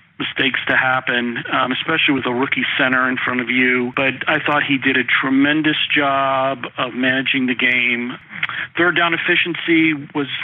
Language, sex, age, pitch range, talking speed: English, male, 40-59, 130-145 Hz, 165 wpm